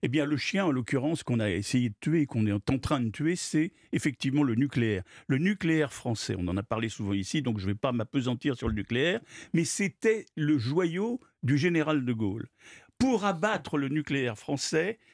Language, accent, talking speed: French, French, 200 wpm